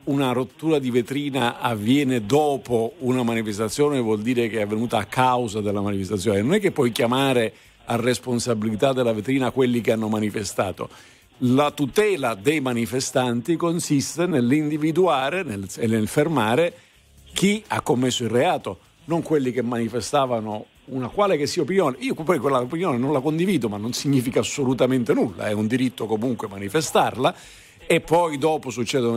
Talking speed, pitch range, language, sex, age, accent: 155 wpm, 115-155 Hz, Italian, male, 50-69, native